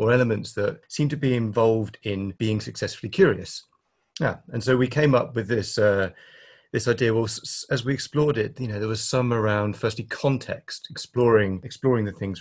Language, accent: English, British